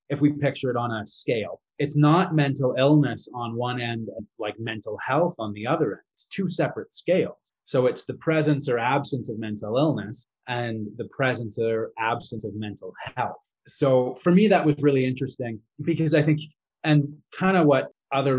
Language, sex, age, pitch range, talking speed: English, male, 30-49, 115-140 Hz, 190 wpm